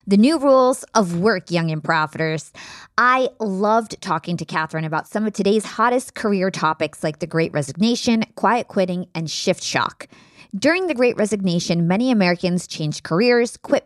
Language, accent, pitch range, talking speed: English, American, 165-230 Hz, 160 wpm